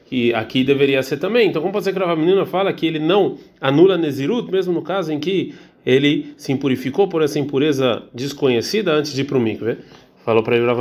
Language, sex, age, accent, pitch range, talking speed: Portuguese, male, 40-59, Brazilian, 125-175 Hz, 200 wpm